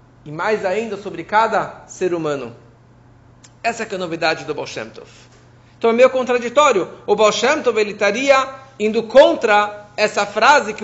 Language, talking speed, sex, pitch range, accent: Portuguese, 150 wpm, male, 165-230 Hz, Brazilian